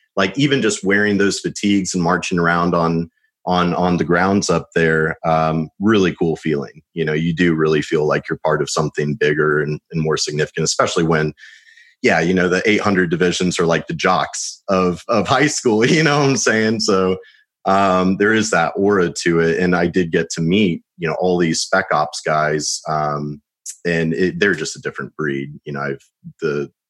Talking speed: 200 wpm